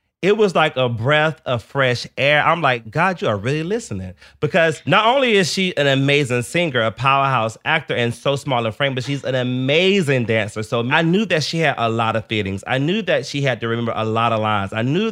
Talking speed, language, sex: 235 wpm, English, male